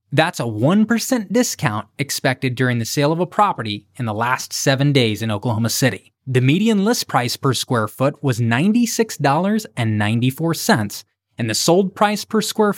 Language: English